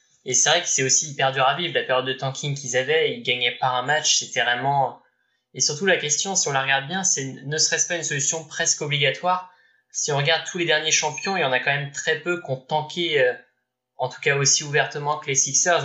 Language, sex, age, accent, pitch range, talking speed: French, male, 20-39, French, 135-155 Hz, 250 wpm